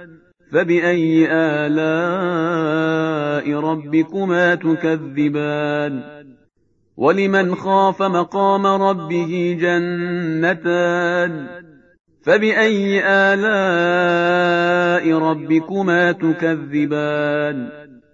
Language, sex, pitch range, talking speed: Persian, male, 160-195 Hz, 45 wpm